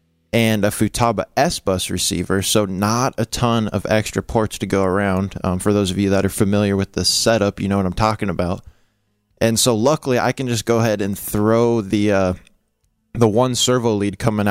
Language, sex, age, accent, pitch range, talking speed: English, male, 20-39, American, 100-115 Hz, 205 wpm